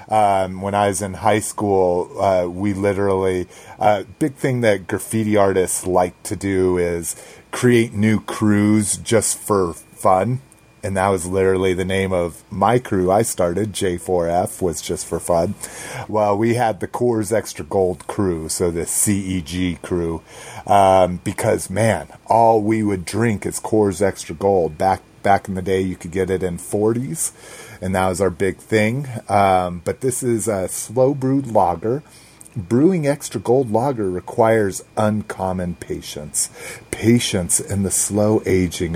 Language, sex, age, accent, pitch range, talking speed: English, male, 30-49, American, 95-110 Hz, 155 wpm